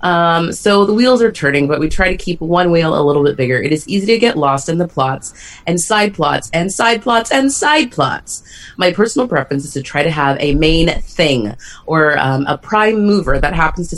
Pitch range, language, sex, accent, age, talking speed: 140-195 Hz, English, female, American, 30-49, 230 wpm